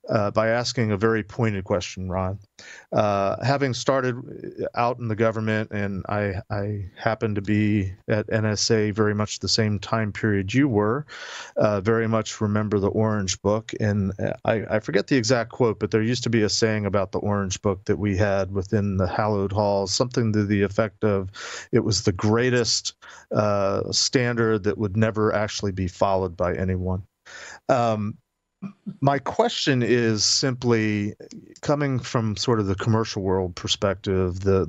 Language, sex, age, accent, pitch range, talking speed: English, male, 40-59, American, 95-115 Hz, 165 wpm